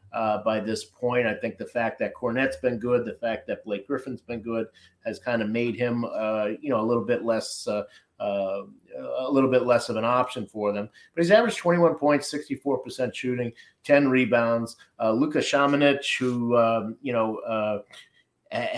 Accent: American